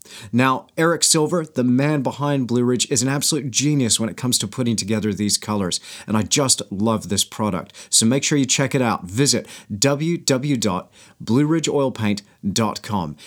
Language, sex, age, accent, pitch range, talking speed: English, male, 40-59, American, 105-135 Hz, 160 wpm